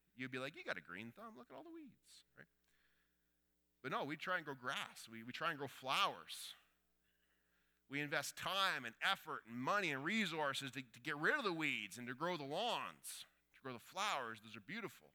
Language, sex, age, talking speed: English, male, 30-49, 220 wpm